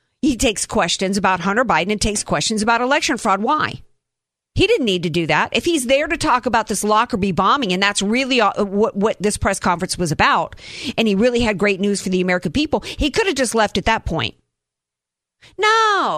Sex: female